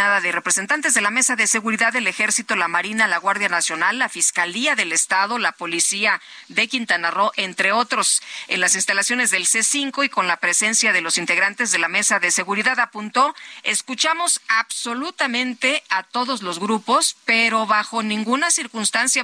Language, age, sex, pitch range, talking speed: Spanish, 40-59, female, 185-245 Hz, 165 wpm